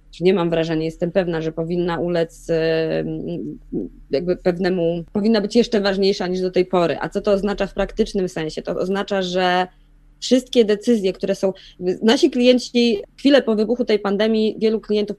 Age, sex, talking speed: 20-39, female, 160 wpm